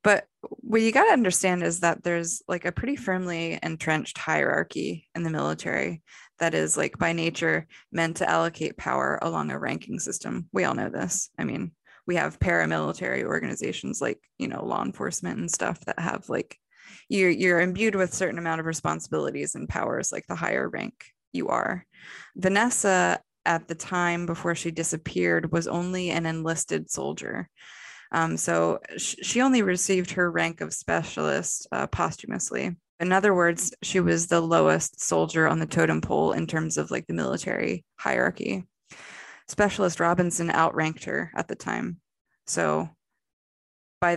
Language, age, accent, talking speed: English, 20-39, American, 160 wpm